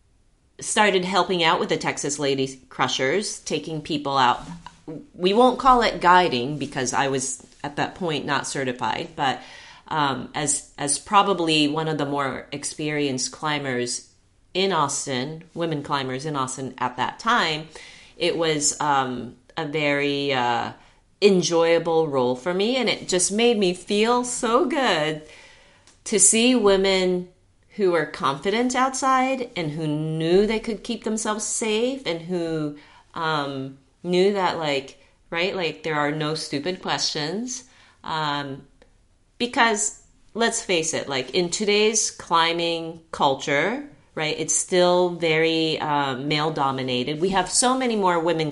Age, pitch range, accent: 30-49, 145-200 Hz, American